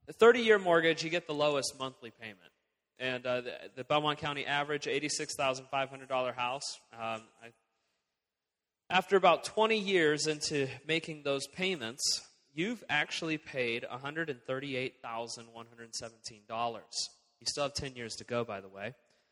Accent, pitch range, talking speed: American, 120-155 Hz, 125 wpm